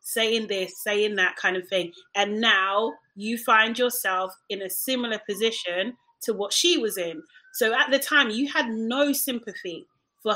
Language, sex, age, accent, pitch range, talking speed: English, female, 30-49, British, 215-290 Hz, 175 wpm